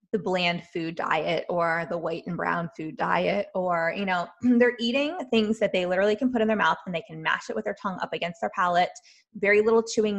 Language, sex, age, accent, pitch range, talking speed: English, female, 20-39, American, 165-220 Hz, 235 wpm